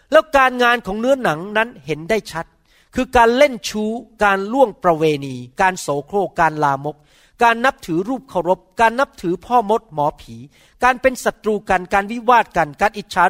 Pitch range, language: 160-225 Hz, Thai